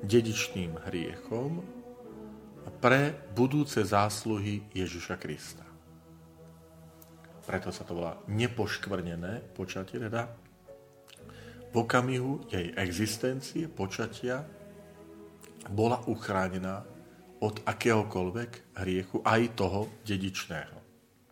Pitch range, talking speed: 90-115 Hz, 75 wpm